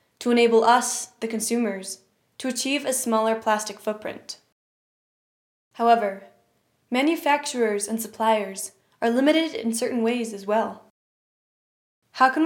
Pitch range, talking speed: 220-255 Hz, 115 wpm